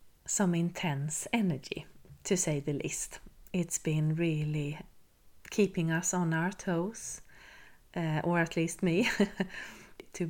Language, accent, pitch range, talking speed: English, Swedish, 155-180 Hz, 120 wpm